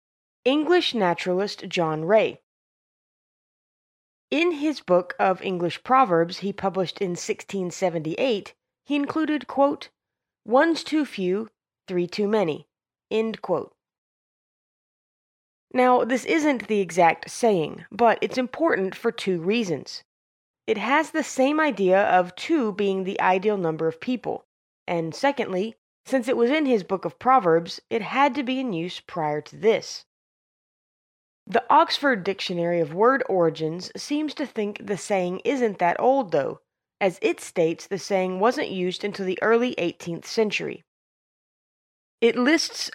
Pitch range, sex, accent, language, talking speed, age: 185-260 Hz, female, American, English, 135 wpm, 20-39